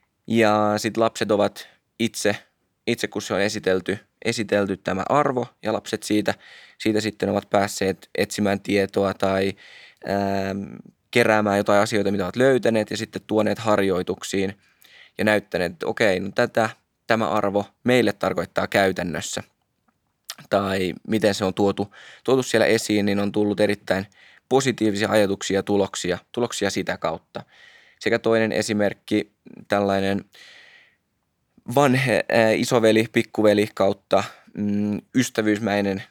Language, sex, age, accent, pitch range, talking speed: Finnish, male, 20-39, native, 100-110 Hz, 115 wpm